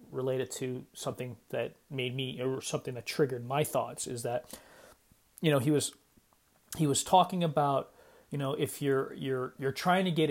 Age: 30-49